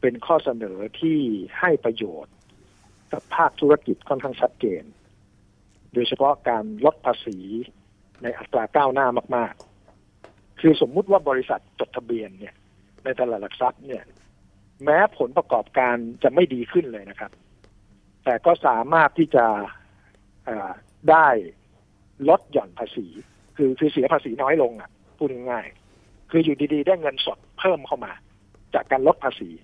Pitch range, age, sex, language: 105-150 Hz, 60-79, male, Thai